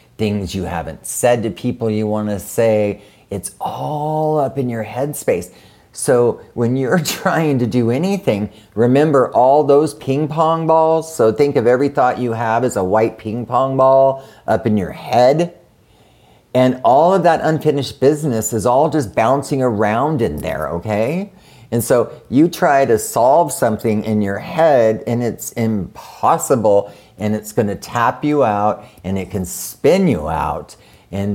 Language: English